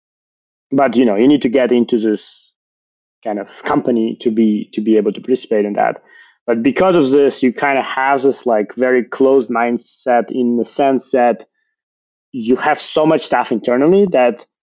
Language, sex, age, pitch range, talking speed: English, male, 20-39, 110-135 Hz, 185 wpm